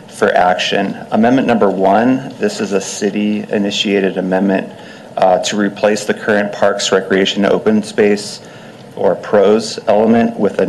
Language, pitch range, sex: English, 100-105 Hz, male